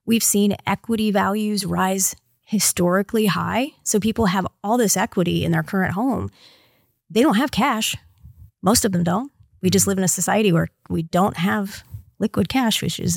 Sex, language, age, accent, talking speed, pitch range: female, English, 30-49, American, 180 wpm, 165-210 Hz